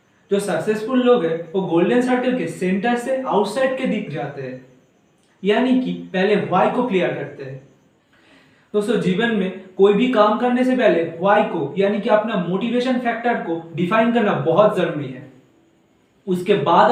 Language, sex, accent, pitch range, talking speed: Hindi, male, native, 165-215 Hz, 165 wpm